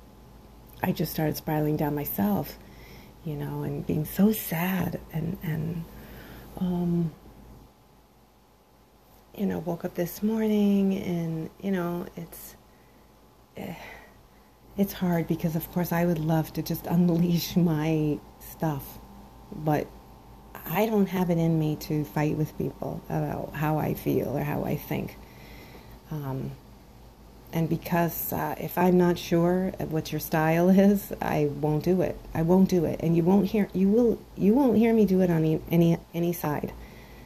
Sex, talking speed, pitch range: female, 155 wpm, 150-180 Hz